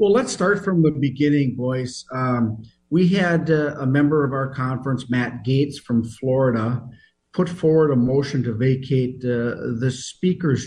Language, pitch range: English, 125-145 Hz